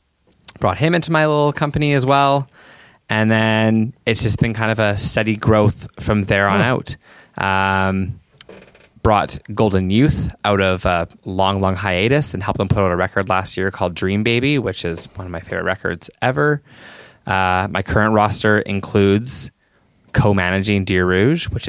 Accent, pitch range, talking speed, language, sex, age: American, 95-115 Hz, 170 wpm, English, male, 20-39